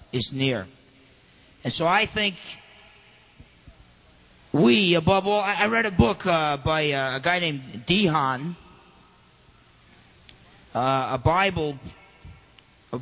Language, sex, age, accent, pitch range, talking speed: English, male, 40-59, American, 145-190 Hz, 120 wpm